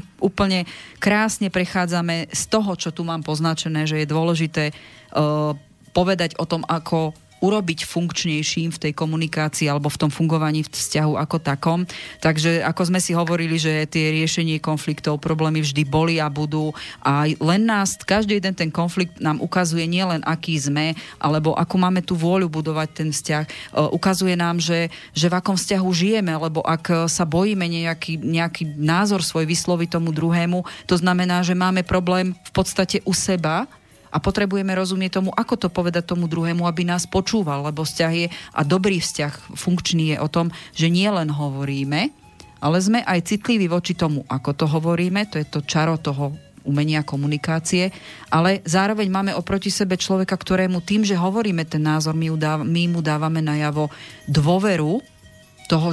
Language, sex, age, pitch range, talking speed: Slovak, female, 30-49, 155-180 Hz, 160 wpm